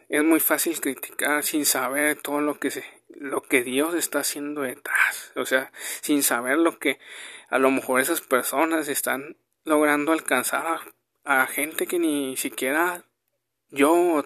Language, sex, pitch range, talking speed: Spanish, male, 135-160 Hz, 160 wpm